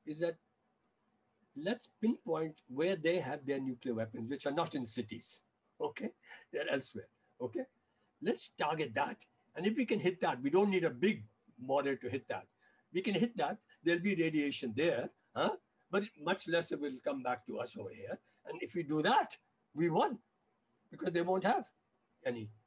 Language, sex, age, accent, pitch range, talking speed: Hindi, male, 60-79, native, 140-195 Hz, 180 wpm